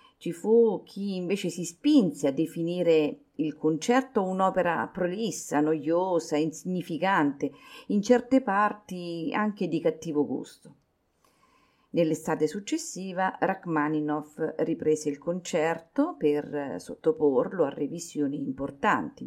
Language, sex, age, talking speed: Italian, female, 40-59, 100 wpm